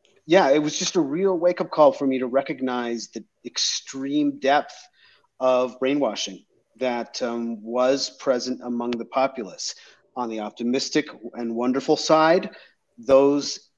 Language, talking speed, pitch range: English, 135 wpm, 125-145 Hz